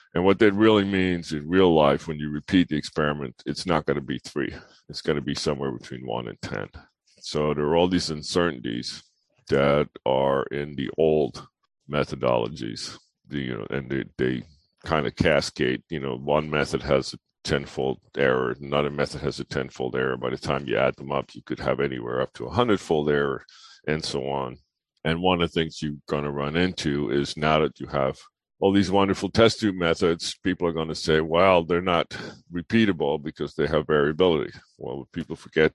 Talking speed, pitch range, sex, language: 200 wpm, 65-80 Hz, male, English